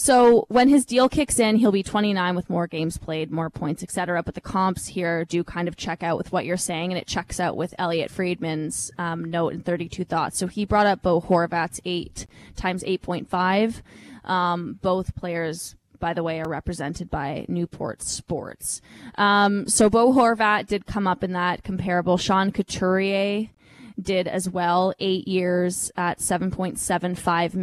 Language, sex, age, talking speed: English, female, 20-39, 175 wpm